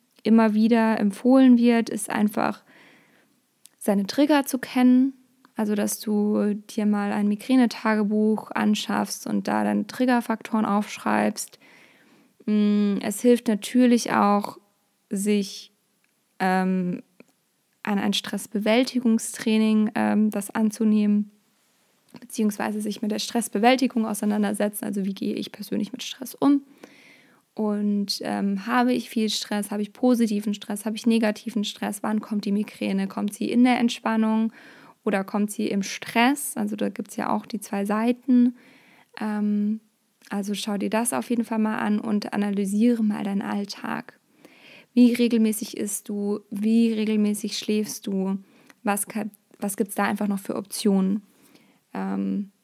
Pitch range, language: 205-235 Hz, German